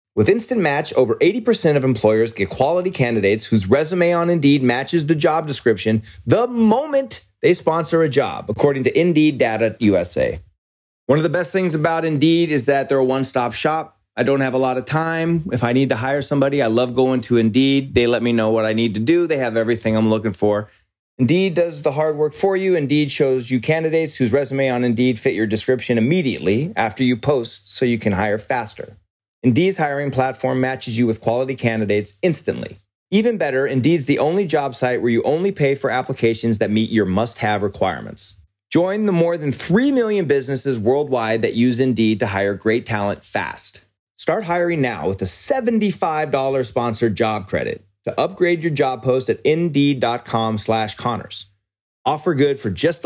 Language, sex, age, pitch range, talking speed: English, male, 30-49, 110-155 Hz, 190 wpm